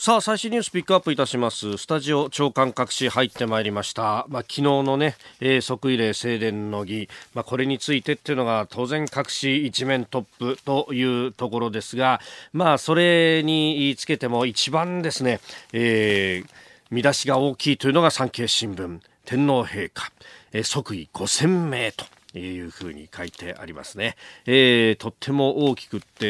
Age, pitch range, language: 40-59, 110-150 Hz, Japanese